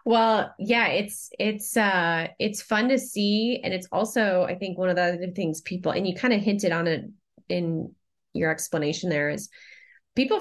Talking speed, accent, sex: 190 wpm, American, female